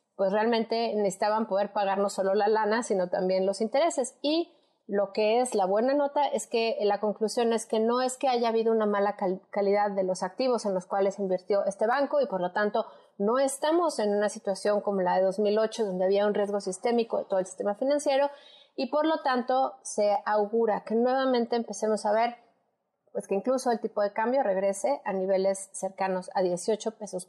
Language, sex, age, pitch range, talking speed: Spanish, female, 30-49, 195-235 Hz, 200 wpm